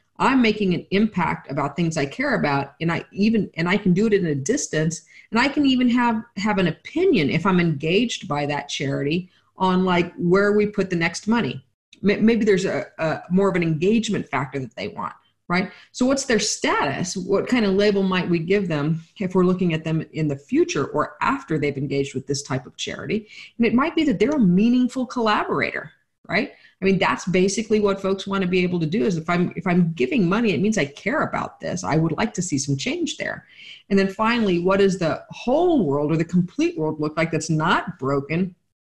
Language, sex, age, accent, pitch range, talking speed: English, female, 40-59, American, 160-220 Hz, 220 wpm